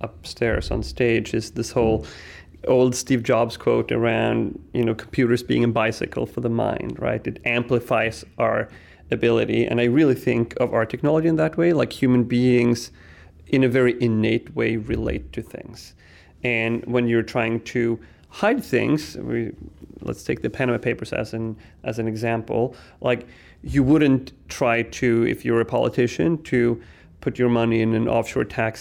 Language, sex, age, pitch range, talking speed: Danish, male, 30-49, 115-130 Hz, 165 wpm